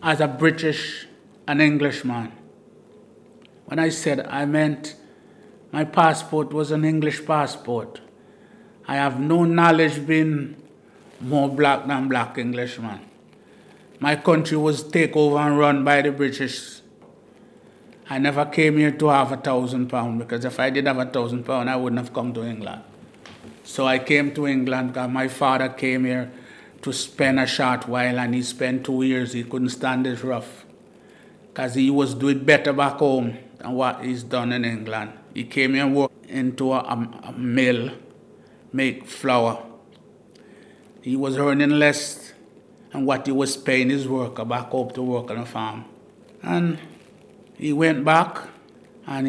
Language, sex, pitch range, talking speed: English, male, 125-150 Hz, 160 wpm